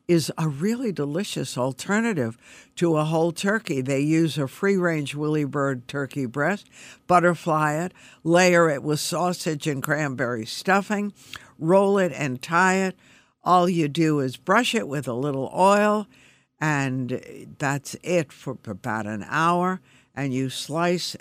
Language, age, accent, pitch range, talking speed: English, 60-79, American, 135-170 Hz, 145 wpm